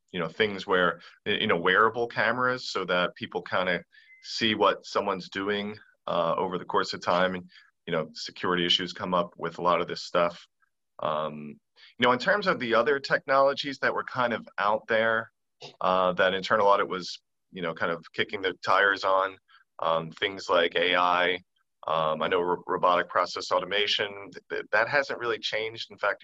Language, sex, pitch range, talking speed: English, male, 90-115 Hz, 185 wpm